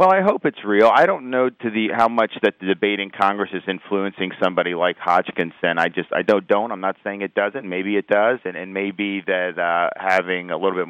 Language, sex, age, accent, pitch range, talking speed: English, male, 40-59, American, 90-100 Hz, 235 wpm